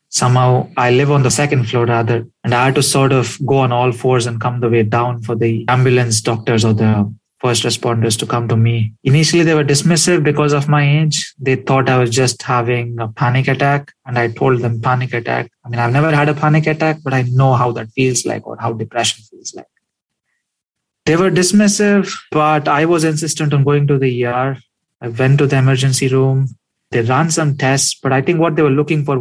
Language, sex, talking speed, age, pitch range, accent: English, male, 220 wpm, 30-49, 120-145 Hz, Indian